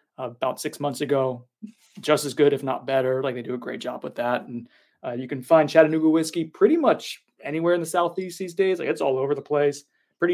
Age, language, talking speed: 20-39, English, 240 wpm